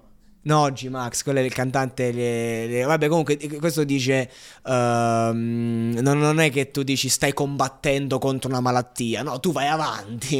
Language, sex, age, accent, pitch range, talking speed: Italian, male, 20-39, native, 115-155 Hz, 165 wpm